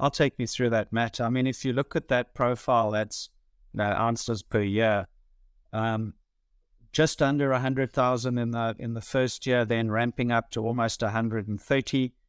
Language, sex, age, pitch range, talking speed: English, male, 50-69, 110-135 Hz, 190 wpm